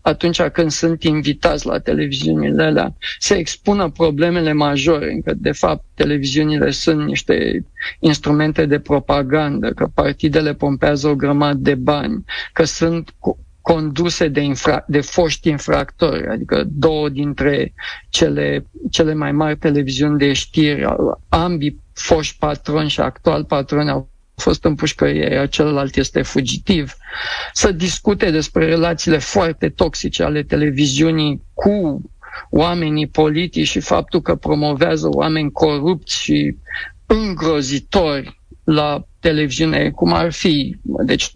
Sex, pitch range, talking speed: male, 145-170 Hz, 120 wpm